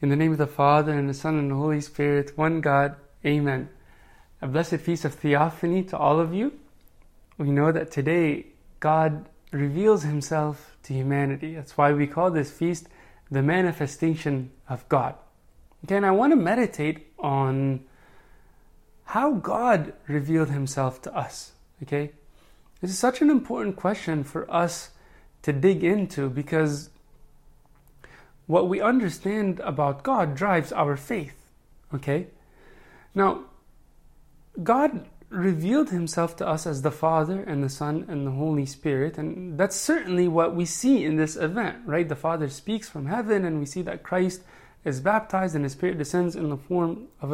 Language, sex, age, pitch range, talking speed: English, male, 20-39, 145-180 Hz, 160 wpm